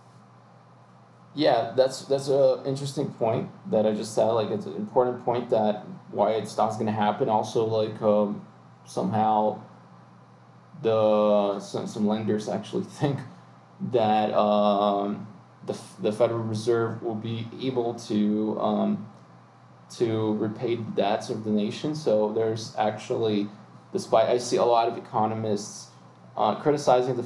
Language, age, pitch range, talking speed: English, 20-39, 105-125 Hz, 135 wpm